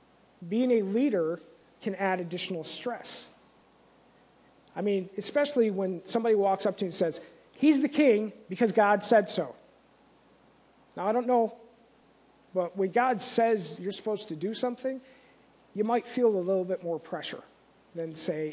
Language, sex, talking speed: English, male, 155 wpm